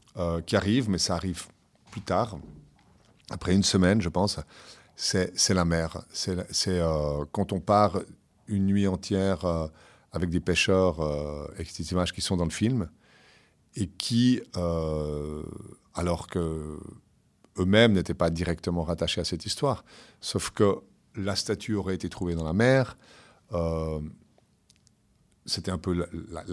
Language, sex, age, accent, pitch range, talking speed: French, male, 50-69, French, 85-100 Hz, 150 wpm